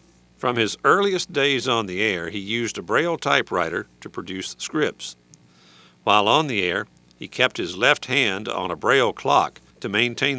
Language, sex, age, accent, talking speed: English, male, 50-69, American, 175 wpm